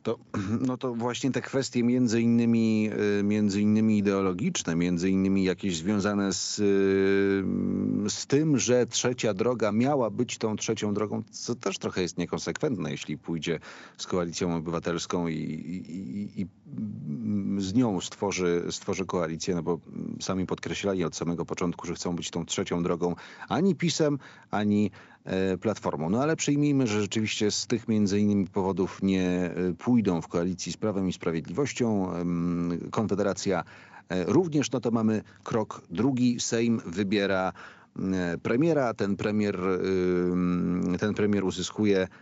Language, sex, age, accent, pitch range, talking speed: Polish, male, 40-59, native, 90-115 Hz, 130 wpm